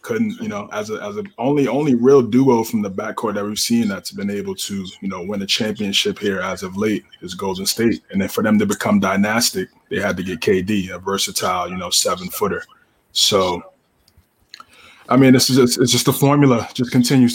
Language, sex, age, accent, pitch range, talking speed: English, male, 20-39, American, 105-160 Hz, 220 wpm